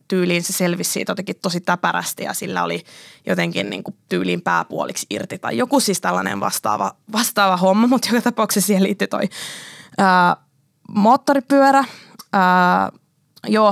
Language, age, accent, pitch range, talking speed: Finnish, 20-39, native, 175-215 Hz, 140 wpm